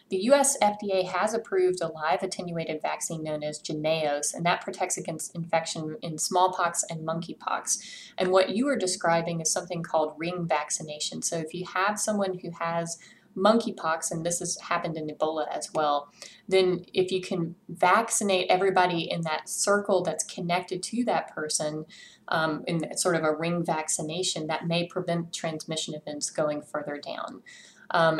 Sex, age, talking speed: female, 30-49, 165 wpm